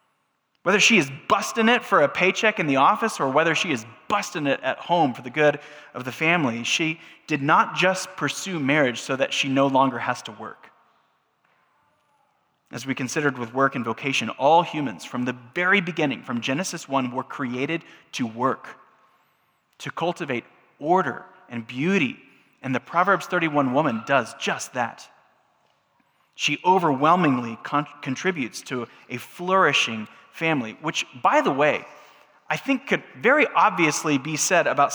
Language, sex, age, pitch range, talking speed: English, male, 20-39, 130-175 Hz, 155 wpm